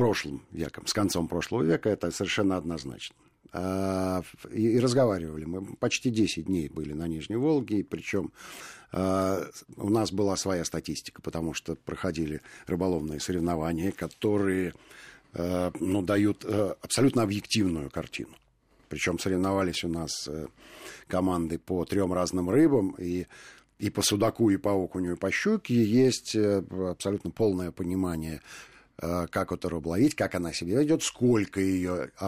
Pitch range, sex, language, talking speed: 85-105 Hz, male, Russian, 130 wpm